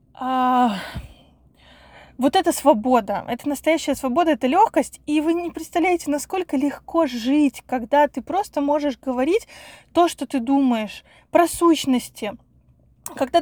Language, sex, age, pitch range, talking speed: Russian, female, 20-39, 280-345 Hz, 120 wpm